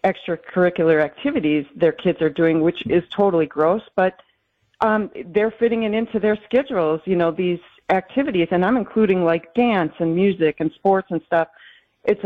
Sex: female